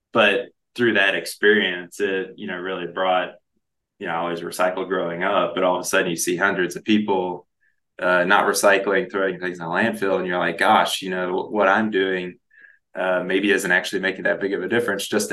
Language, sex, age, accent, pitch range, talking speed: English, male, 20-39, American, 90-105 Hz, 215 wpm